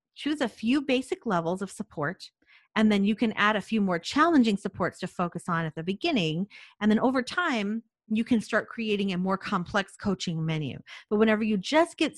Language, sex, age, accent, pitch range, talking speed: English, female, 40-59, American, 180-235 Hz, 200 wpm